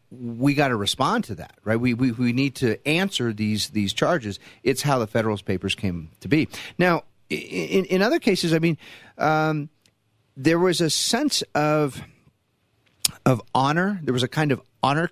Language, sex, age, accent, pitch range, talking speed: English, male, 40-59, American, 115-155 Hz, 180 wpm